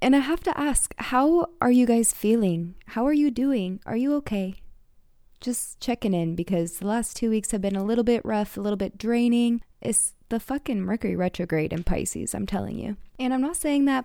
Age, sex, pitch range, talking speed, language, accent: 20-39, female, 195-230 Hz, 215 wpm, English, American